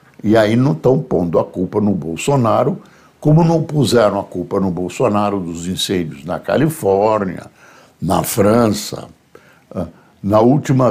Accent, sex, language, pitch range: Brazilian, male, Portuguese, 100-150 Hz